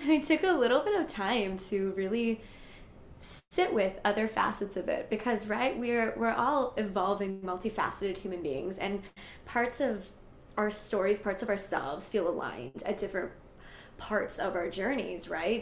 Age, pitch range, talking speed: 10-29, 200-240 Hz, 160 wpm